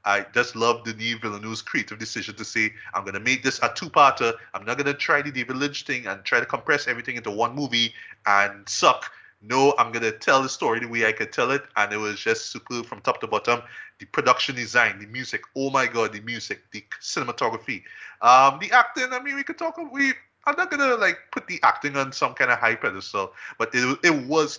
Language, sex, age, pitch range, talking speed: English, male, 20-39, 105-125 Hz, 225 wpm